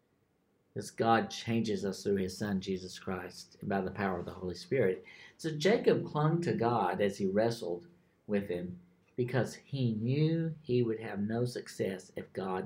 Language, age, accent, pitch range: English, 50-69, American, 105-145 Hz